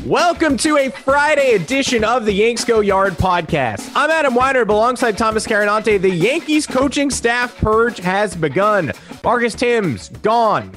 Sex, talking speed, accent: male, 155 wpm, American